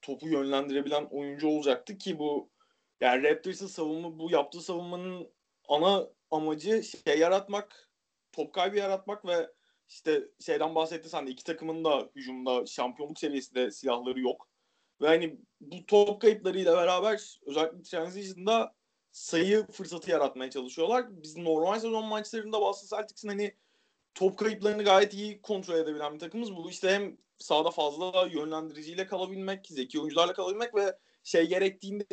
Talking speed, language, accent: 140 wpm, Turkish, native